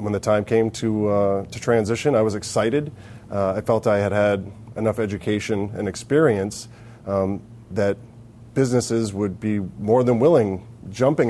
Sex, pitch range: male, 100-120 Hz